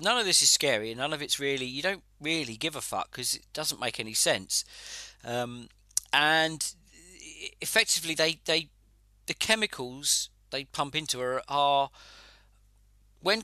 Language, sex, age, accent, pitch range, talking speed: English, male, 40-59, British, 100-155 Hz, 155 wpm